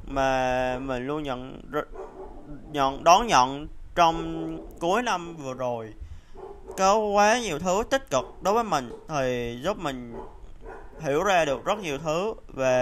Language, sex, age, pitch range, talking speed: Vietnamese, male, 20-39, 125-165 Hz, 145 wpm